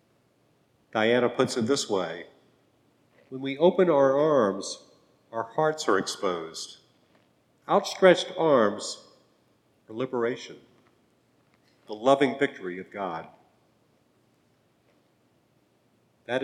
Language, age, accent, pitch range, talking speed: English, 50-69, American, 115-150 Hz, 90 wpm